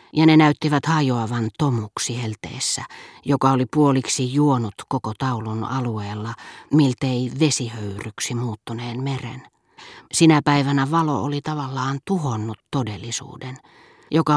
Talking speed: 105 wpm